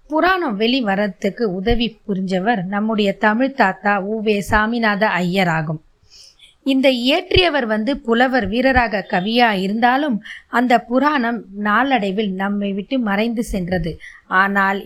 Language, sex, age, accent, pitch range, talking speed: Tamil, female, 20-39, native, 200-255 Hz, 110 wpm